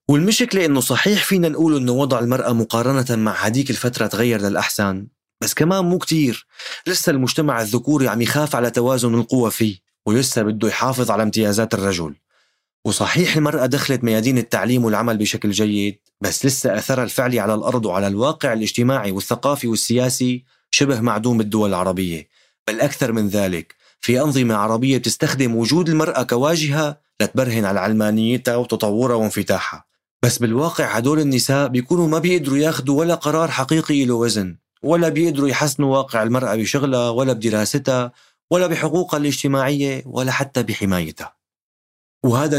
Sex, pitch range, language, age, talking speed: male, 110-140 Hz, Arabic, 30-49, 140 wpm